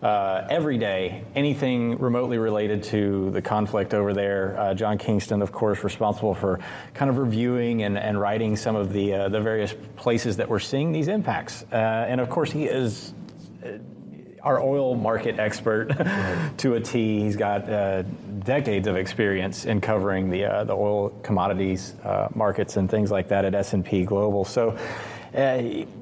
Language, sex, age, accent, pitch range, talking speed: English, male, 30-49, American, 100-125 Hz, 170 wpm